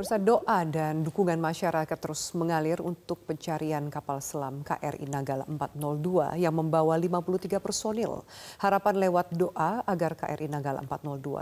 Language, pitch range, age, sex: Indonesian, 150-185 Hz, 40-59, female